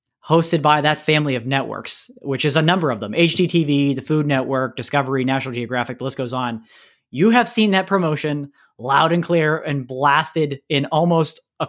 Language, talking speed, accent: English, 185 wpm, American